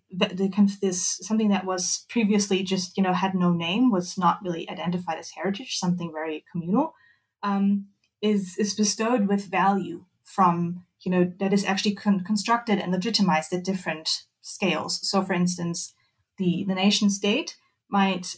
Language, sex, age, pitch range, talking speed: English, female, 20-39, 175-200 Hz, 160 wpm